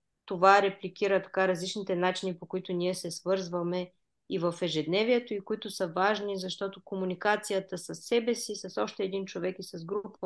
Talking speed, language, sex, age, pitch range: 170 wpm, Bulgarian, female, 20-39, 170-205 Hz